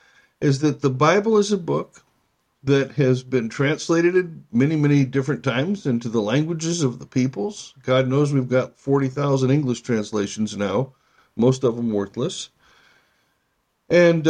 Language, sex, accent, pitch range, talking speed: English, male, American, 135-175 Hz, 145 wpm